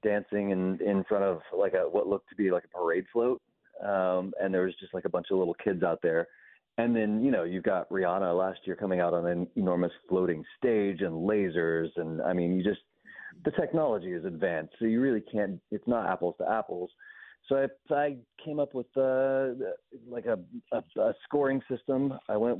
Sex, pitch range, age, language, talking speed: male, 95-125 Hz, 30-49, English, 210 wpm